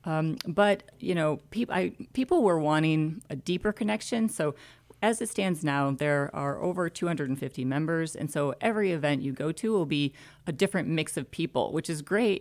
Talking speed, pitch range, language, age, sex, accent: 190 wpm, 140-165 Hz, English, 40-59, female, American